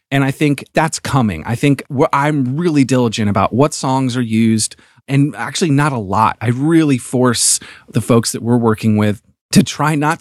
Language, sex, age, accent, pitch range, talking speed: English, male, 30-49, American, 110-145 Hz, 190 wpm